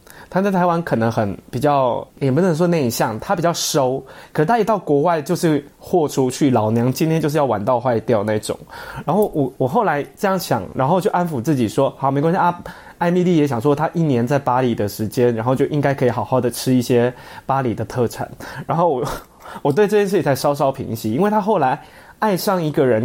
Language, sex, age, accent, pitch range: Chinese, male, 20-39, native, 130-185 Hz